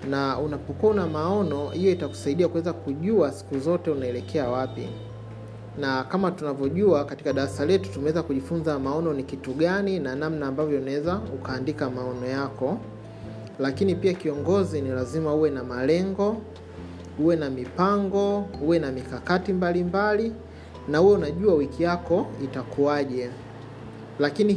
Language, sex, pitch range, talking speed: Swahili, male, 130-170 Hz, 130 wpm